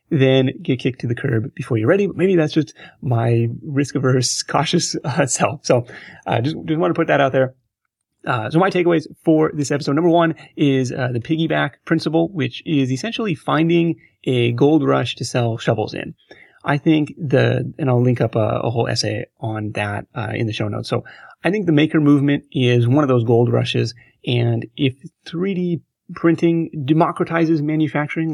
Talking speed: 190 wpm